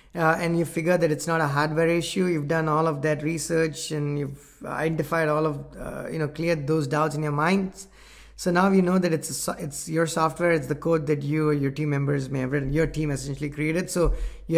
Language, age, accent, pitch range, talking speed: English, 20-39, Indian, 150-170 Hz, 240 wpm